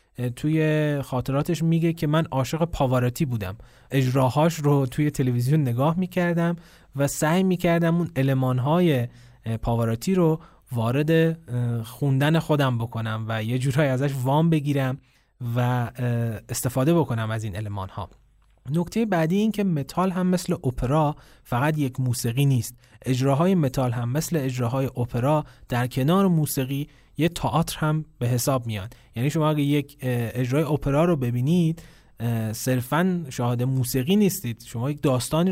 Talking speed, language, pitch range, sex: 135 wpm, Persian, 120-155 Hz, male